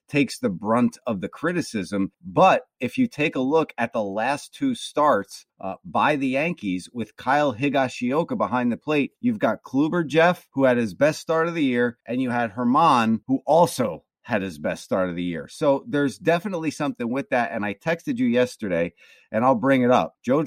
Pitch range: 125-175 Hz